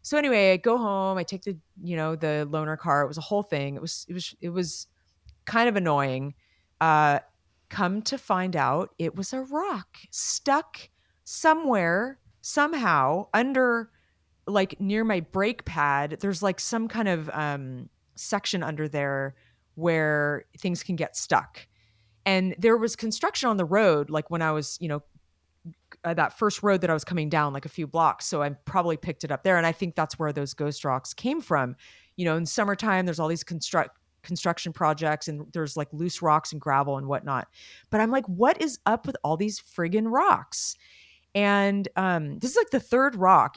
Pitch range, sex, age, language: 150-200 Hz, female, 30-49, English